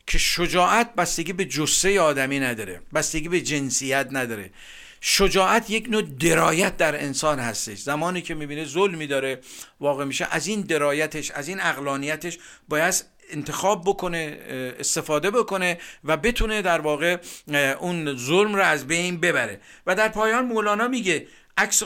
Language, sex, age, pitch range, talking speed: Persian, male, 50-69, 150-195 Hz, 145 wpm